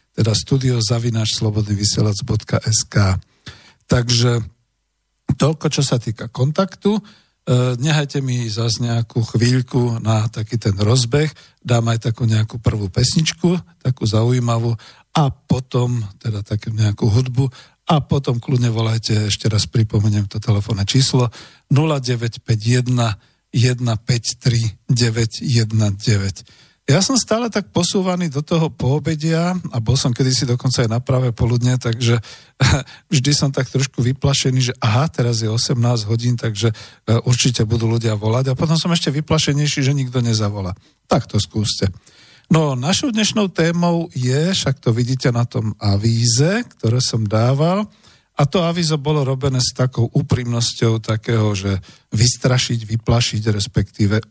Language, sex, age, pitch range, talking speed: Slovak, male, 50-69, 115-140 Hz, 130 wpm